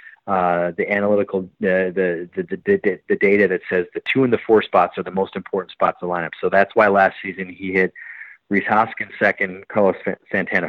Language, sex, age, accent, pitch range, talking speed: English, male, 30-49, American, 95-120 Hz, 215 wpm